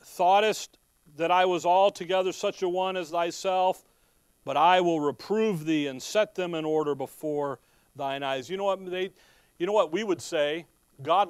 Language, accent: English, American